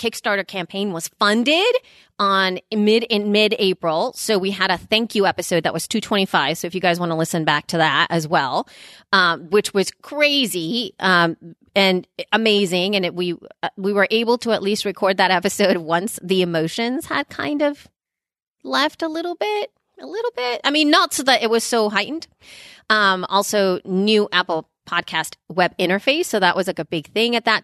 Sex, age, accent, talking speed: female, 30-49, American, 195 wpm